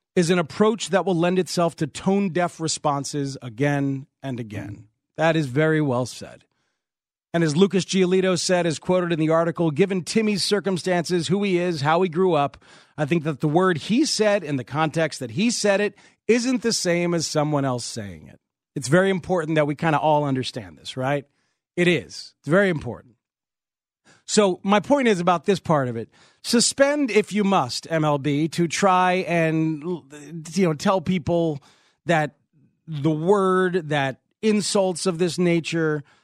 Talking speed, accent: 175 wpm, American